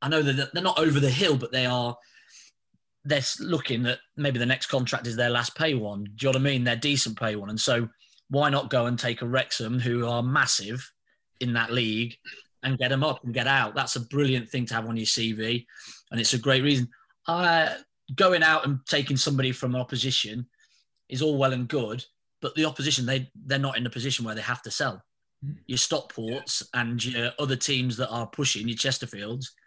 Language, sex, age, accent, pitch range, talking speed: English, male, 20-39, British, 120-140 Hz, 220 wpm